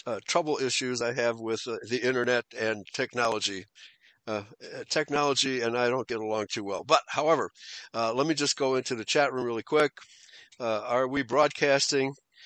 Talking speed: 180 wpm